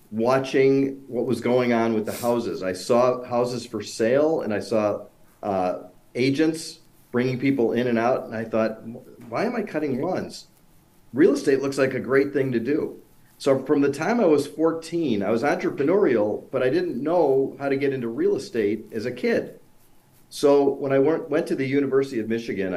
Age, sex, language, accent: 50-69, male, English, American